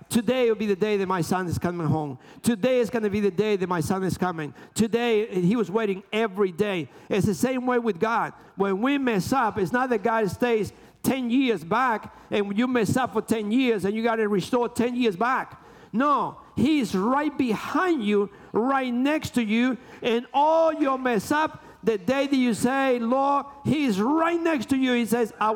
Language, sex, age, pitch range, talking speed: English, male, 50-69, 185-245 Hz, 210 wpm